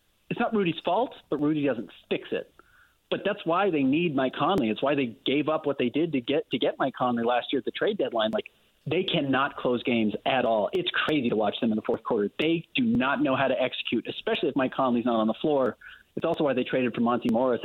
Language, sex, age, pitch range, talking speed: English, male, 30-49, 120-175 Hz, 255 wpm